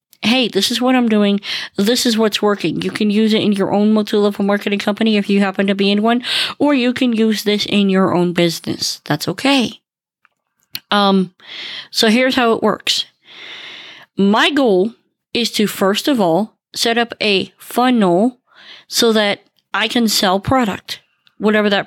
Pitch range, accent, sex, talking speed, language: 185-235 Hz, American, female, 175 wpm, English